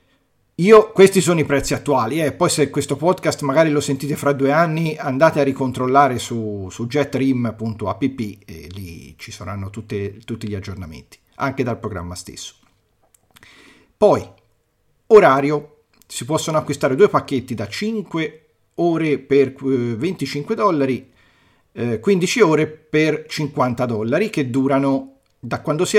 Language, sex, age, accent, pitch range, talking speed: Italian, male, 40-59, native, 115-155 Hz, 130 wpm